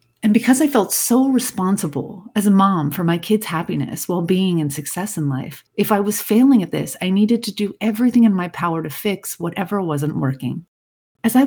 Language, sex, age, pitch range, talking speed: English, female, 40-59, 160-205 Hz, 205 wpm